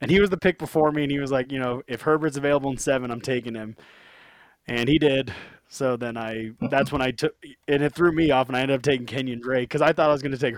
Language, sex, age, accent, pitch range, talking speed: English, male, 20-39, American, 125-145 Hz, 290 wpm